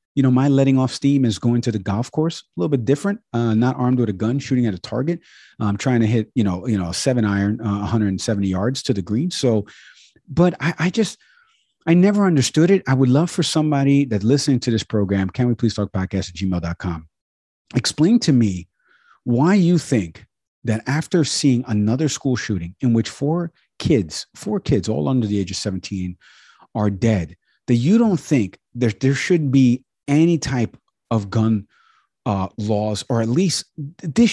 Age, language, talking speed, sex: 40-59, English, 200 wpm, male